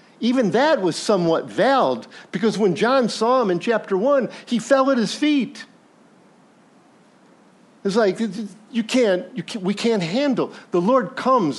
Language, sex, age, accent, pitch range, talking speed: English, male, 50-69, American, 160-235 Hz, 155 wpm